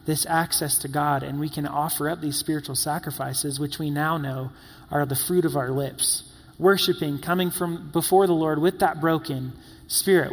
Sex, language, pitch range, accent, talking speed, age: male, English, 140-175 Hz, American, 185 wpm, 30-49